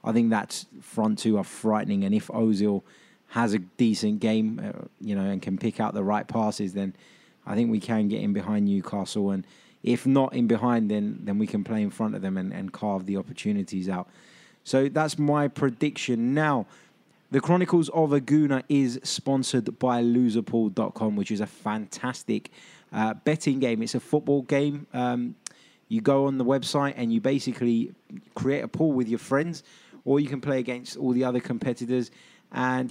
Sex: male